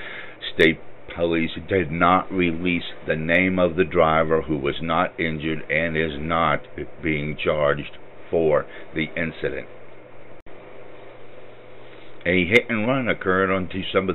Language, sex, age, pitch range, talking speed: English, male, 60-79, 80-95 Hz, 125 wpm